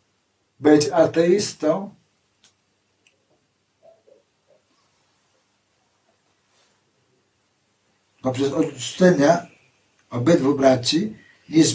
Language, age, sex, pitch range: Polish, 60-79, male, 130-155 Hz